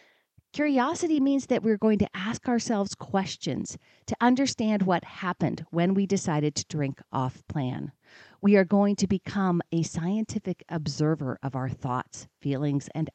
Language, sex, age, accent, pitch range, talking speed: English, female, 40-59, American, 155-220 Hz, 145 wpm